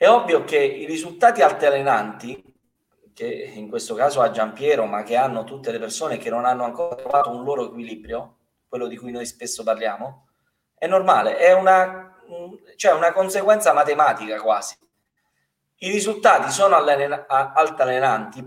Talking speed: 145 wpm